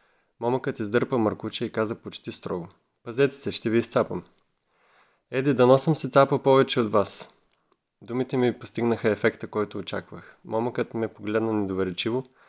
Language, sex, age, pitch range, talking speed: Bulgarian, male, 20-39, 105-125 Hz, 145 wpm